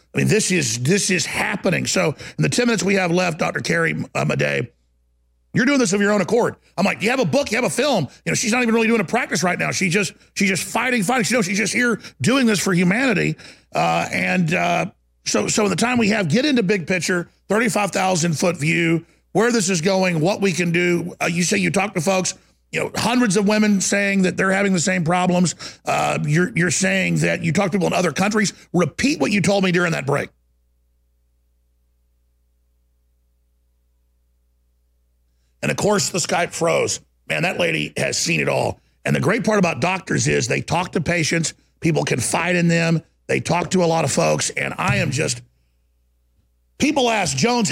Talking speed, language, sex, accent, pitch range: 215 wpm, English, male, American, 140-210 Hz